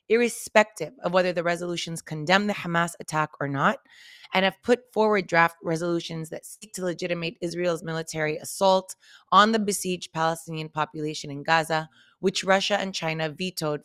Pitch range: 165-195 Hz